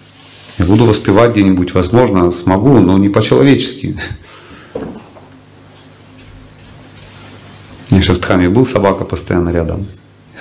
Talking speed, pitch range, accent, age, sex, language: 105 wpm, 90-120 Hz, native, 40-59, male, Russian